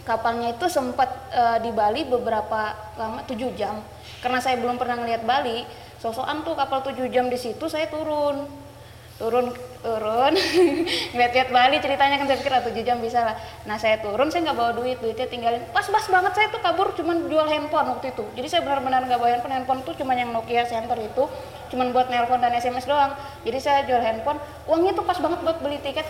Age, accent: 20-39, native